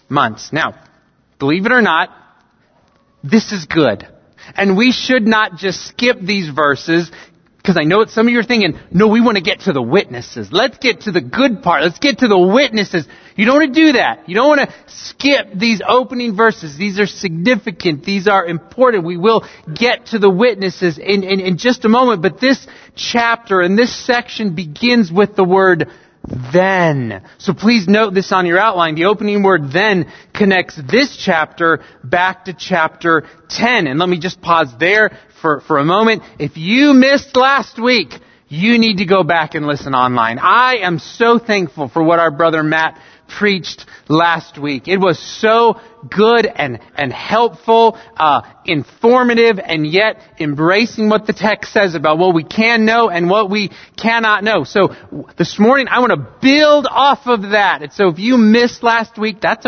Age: 30-49